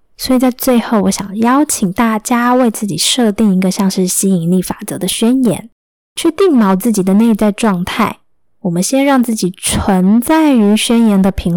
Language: Chinese